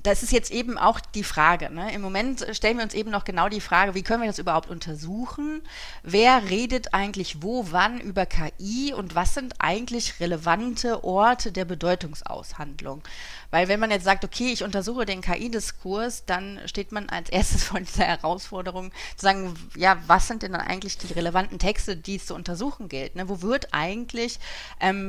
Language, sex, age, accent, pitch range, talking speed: German, female, 30-49, German, 180-225 Hz, 185 wpm